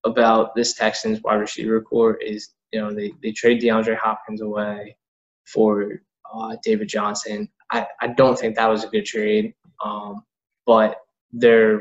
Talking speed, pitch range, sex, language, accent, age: 160 wpm, 105-120 Hz, male, English, American, 10-29